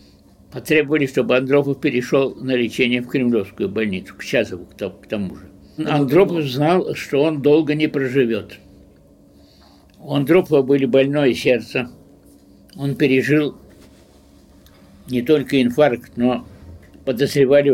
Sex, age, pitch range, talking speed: male, 60-79, 100-150 Hz, 110 wpm